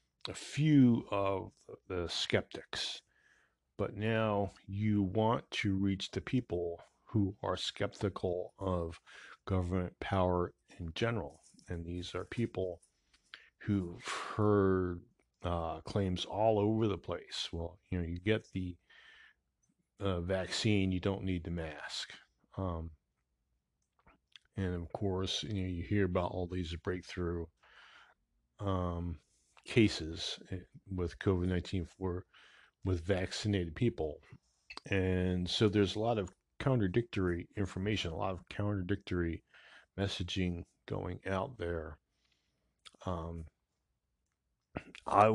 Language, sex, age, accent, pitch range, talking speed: English, male, 40-59, American, 85-100 Hz, 110 wpm